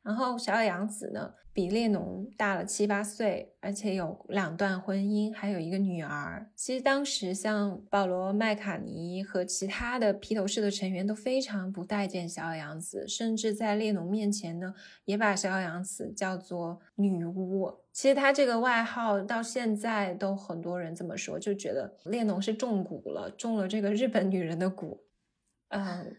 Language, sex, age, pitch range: Chinese, female, 20-39, 185-220 Hz